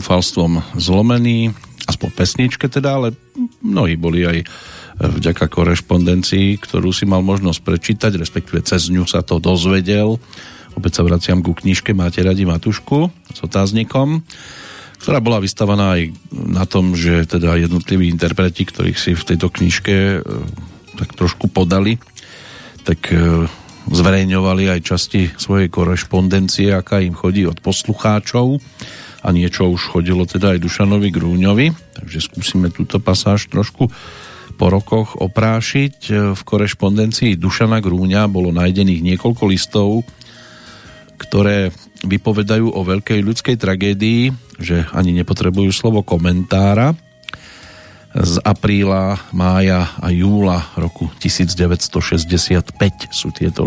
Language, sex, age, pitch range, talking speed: Slovak, male, 40-59, 90-105 Hz, 115 wpm